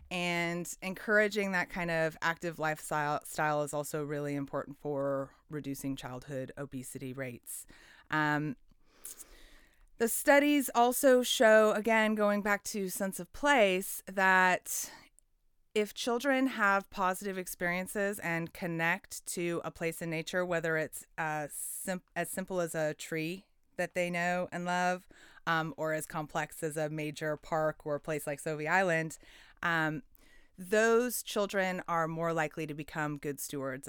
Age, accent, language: 30-49, American, English